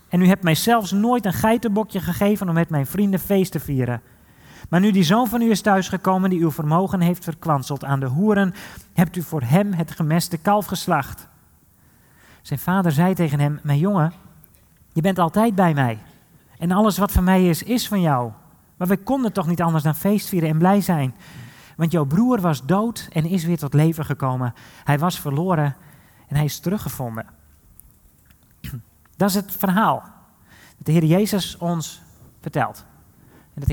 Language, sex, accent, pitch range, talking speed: Dutch, male, Dutch, 130-180 Hz, 185 wpm